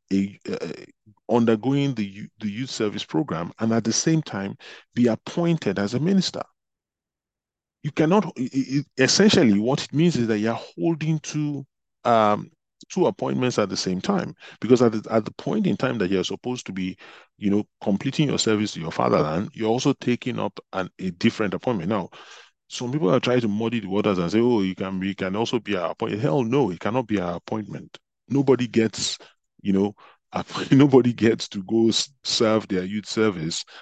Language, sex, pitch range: English, male, 100-130 Hz